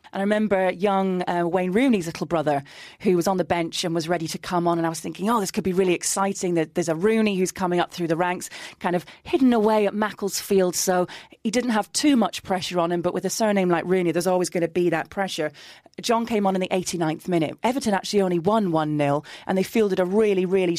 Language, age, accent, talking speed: English, 30-49, British, 250 wpm